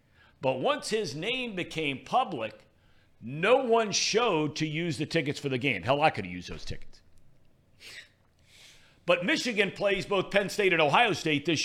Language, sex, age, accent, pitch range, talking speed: English, male, 60-79, American, 130-210 Hz, 170 wpm